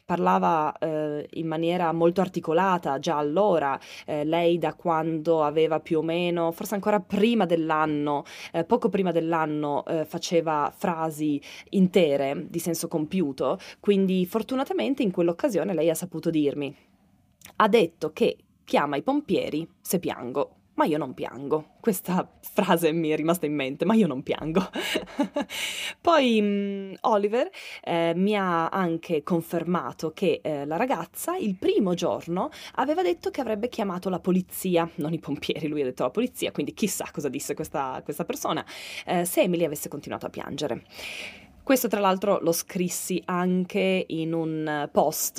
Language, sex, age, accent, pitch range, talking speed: Italian, female, 20-39, native, 160-210 Hz, 150 wpm